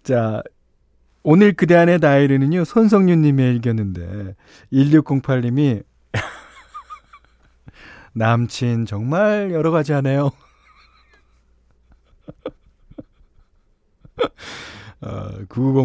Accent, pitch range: native, 105-160 Hz